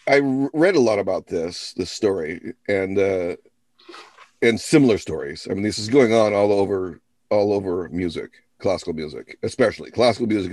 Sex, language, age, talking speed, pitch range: male, English, 40-59, 165 wpm, 90-115 Hz